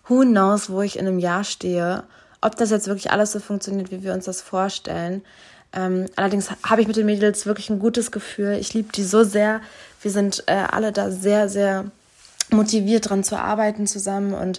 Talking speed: 200 wpm